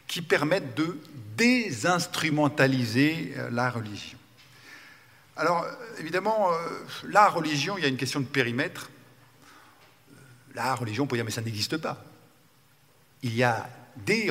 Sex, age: male, 50-69